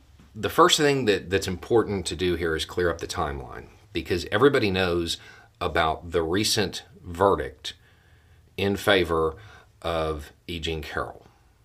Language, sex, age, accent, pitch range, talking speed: English, male, 40-59, American, 85-105 Hz, 140 wpm